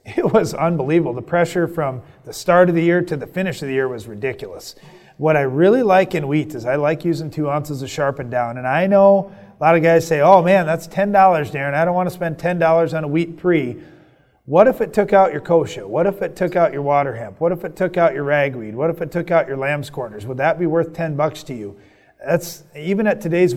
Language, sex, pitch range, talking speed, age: English, male, 145-180 Hz, 255 wpm, 30-49